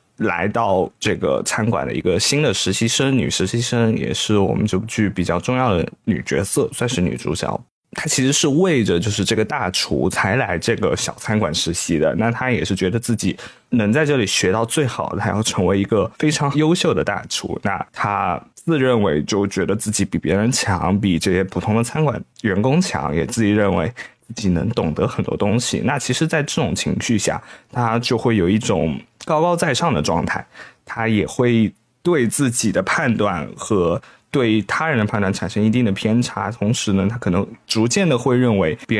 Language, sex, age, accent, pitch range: Chinese, male, 20-39, native, 100-130 Hz